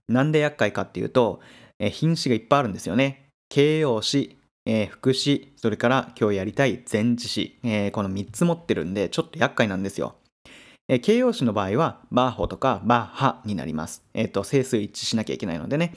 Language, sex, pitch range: Japanese, male, 110-145 Hz